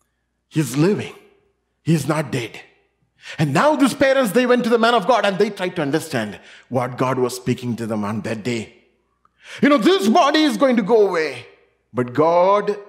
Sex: male